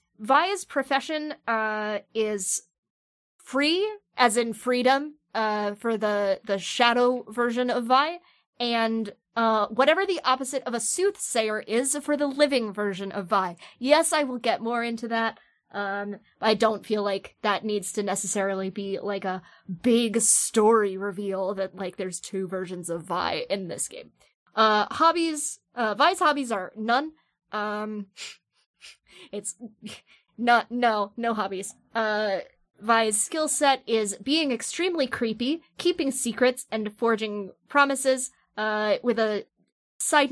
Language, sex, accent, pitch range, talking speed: English, female, American, 210-260 Hz, 140 wpm